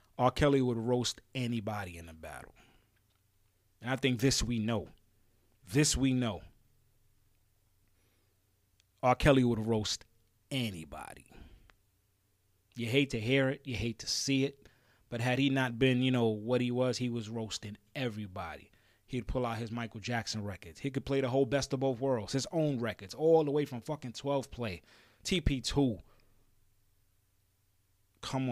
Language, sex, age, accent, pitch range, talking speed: English, male, 30-49, American, 105-130 Hz, 155 wpm